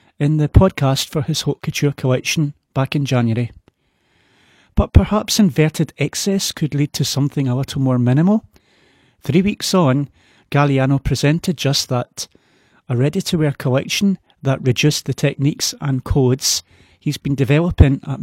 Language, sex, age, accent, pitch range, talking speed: English, male, 40-59, British, 130-155 Hz, 140 wpm